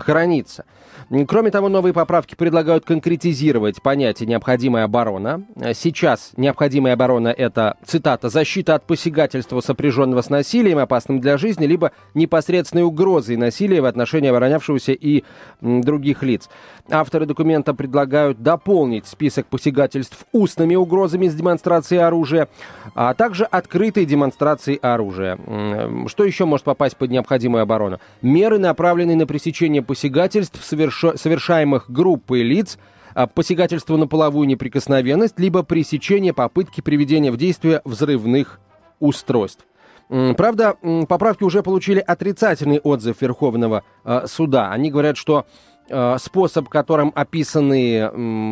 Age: 30-49